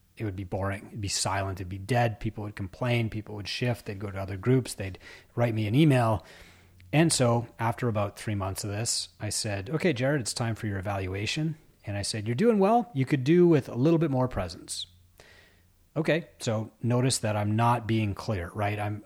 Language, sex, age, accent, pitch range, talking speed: English, male, 30-49, American, 95-120 Hz, 215 wpm